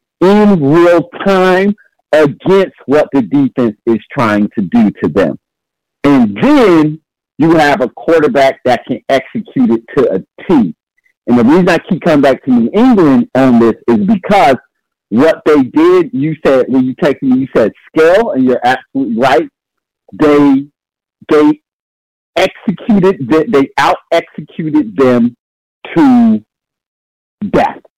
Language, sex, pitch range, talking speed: English, male, 135-195 Hz, 140 wpm